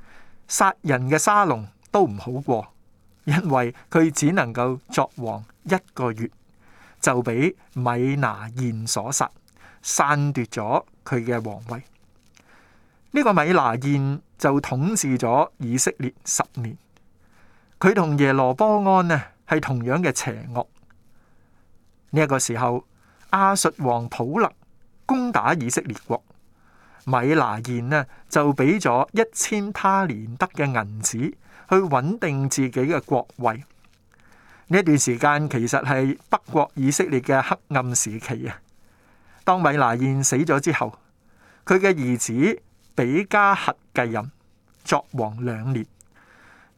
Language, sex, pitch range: Chinese, male, 115-155 Hz